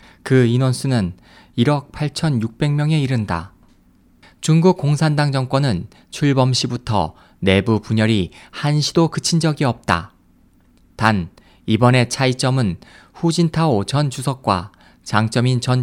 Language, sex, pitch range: Korean, male, 110-150 Hz